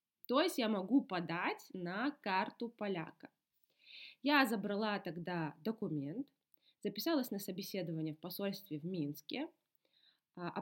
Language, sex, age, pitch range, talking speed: Russian, female, 20-39, 170-240 Hz, 115 wpm